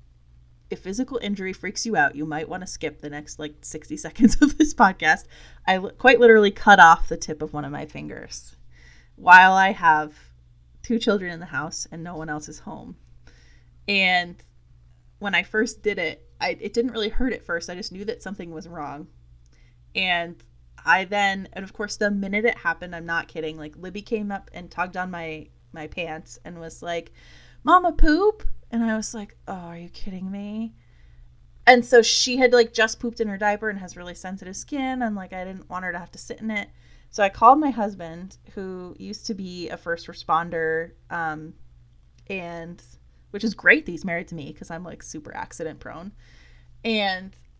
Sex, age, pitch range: female, 20-39, 155-215 Hz